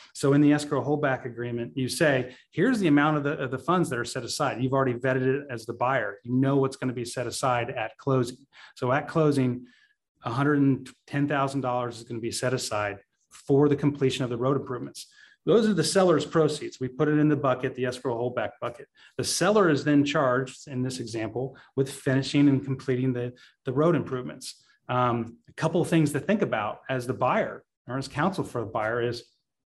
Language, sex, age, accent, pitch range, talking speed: English, male, 30-49, American, 125-150 Hz, 205 wpm